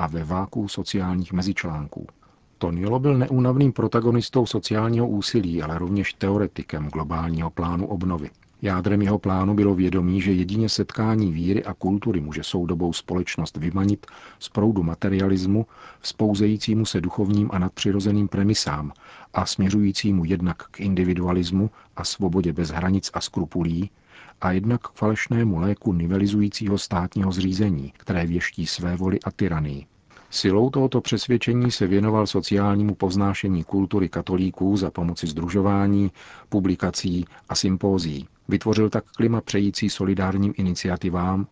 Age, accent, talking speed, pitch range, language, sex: 40-59, native, 125 wpm, 90-105 Hz, Czech, male